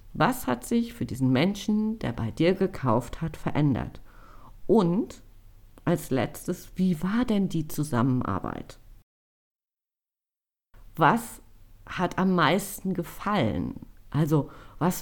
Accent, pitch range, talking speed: German, 130-185 Hz, 110 wpm